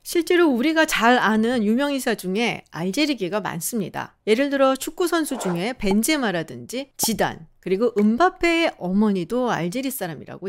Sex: female